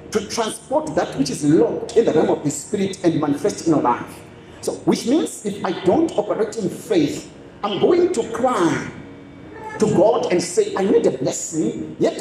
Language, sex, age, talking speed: English, male, 50-69, 190 wpm